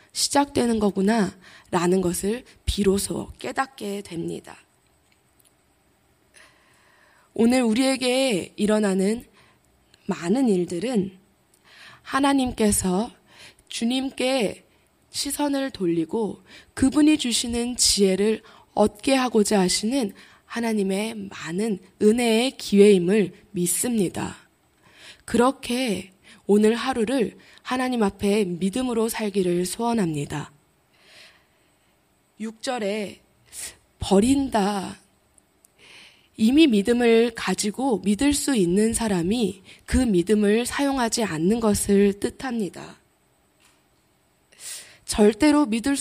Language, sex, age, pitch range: Korean, female, 20-39, 190-240 Hz